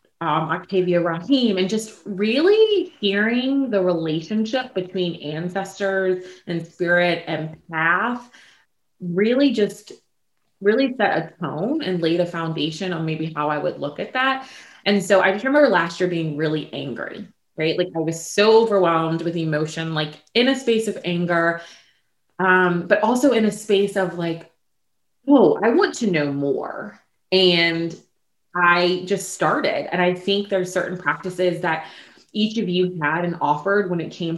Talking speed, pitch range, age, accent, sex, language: 155 wpm, 165-205 Hz, 20-39, American, female, English